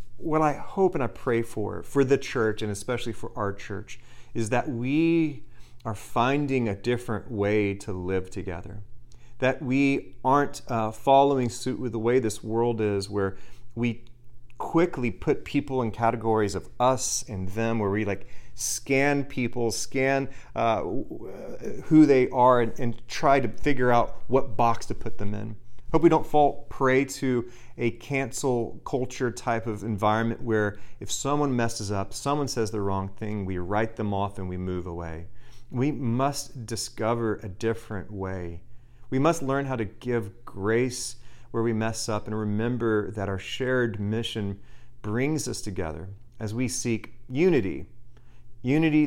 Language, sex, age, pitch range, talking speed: English, male, 30-49, 105-130 Hz, 160 wpm